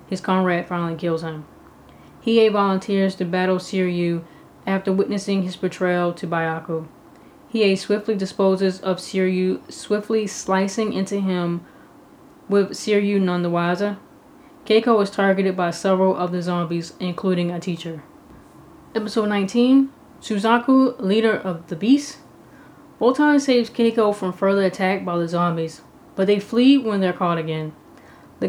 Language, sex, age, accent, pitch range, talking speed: English, female, 20-39, American, 185-220 Hz, 135 wpm